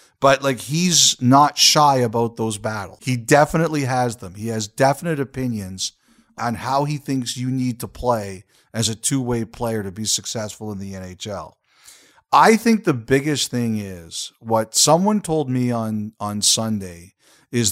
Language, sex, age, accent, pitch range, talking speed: English, male, 50-69, American, 110-140 Hz, 165 wpm